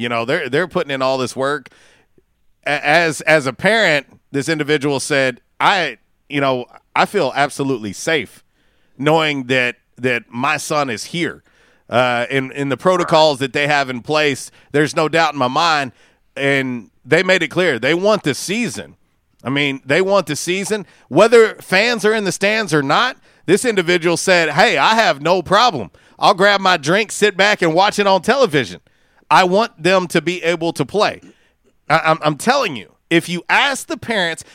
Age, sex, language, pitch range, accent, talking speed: 40-59, male, English, 145-195 Hz, American, 180 wpm